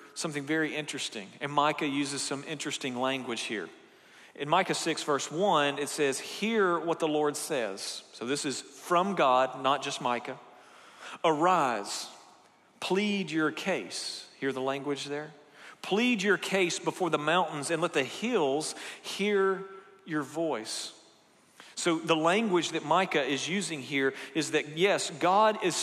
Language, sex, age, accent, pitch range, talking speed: English, male, 40-59, American, 145-180 Hz, 150 wpm